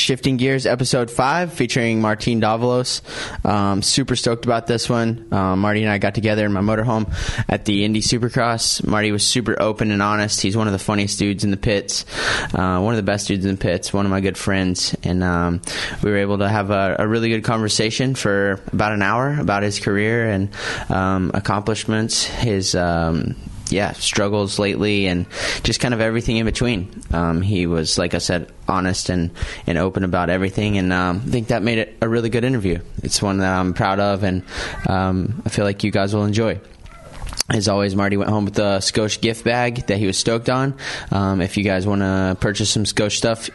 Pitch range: 95-115 Hz